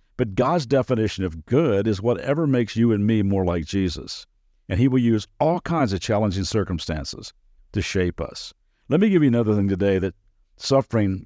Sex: male